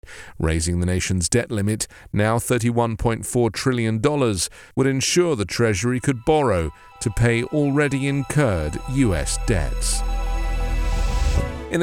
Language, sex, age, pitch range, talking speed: English, male, 40-59, 100-135 Hz, 105 wpm